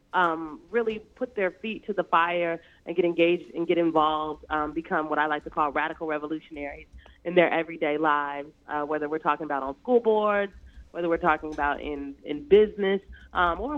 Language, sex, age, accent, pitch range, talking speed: English, female, 30-49, American, 155-195 Hz, 190 wpm